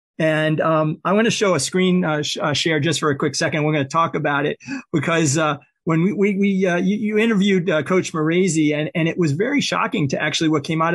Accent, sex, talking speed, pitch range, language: American, male, 260 wpm, 150-175 Hz, English